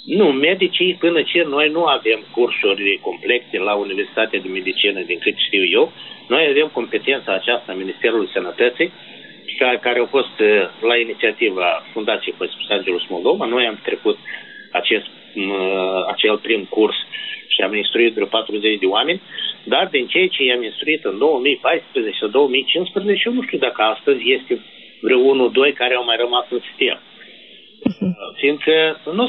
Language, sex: Romanian, male